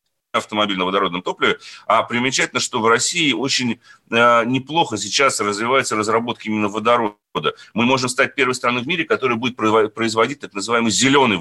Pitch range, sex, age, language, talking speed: 105-125 Hz, male, 30-49, Russian, 160 wpm